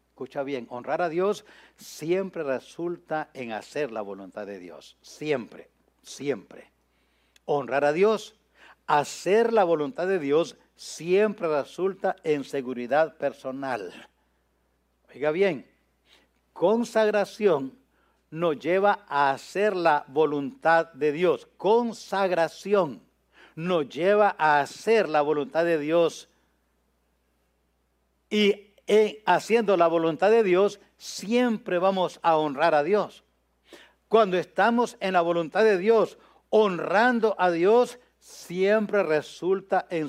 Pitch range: 145-230 Hz